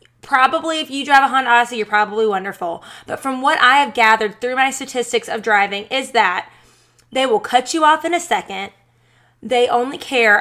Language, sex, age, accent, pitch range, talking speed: English, female, 20-39, American, 210-275 Hz, 195 wpm